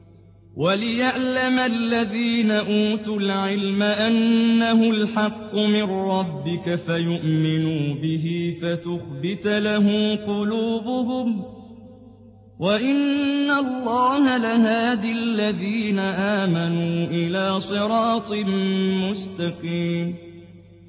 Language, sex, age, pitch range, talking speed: Arabic, male, 30-49, 190-280 Hz, 60 wpm